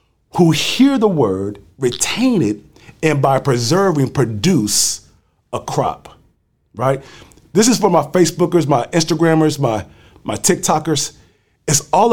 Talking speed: 125 wpm